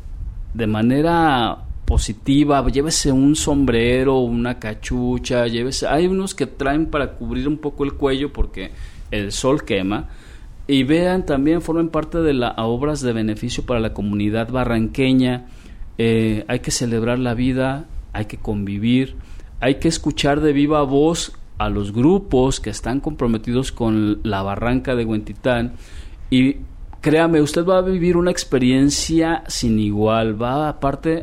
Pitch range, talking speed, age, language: 115-145 Hz, 145 wpm, 40-59, Spanish